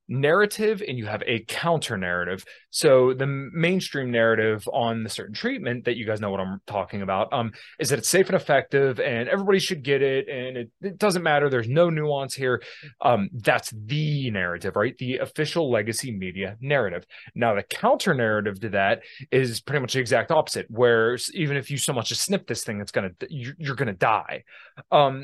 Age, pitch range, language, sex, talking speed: 20-39, 110-140 Hz, English, male, 200 wpm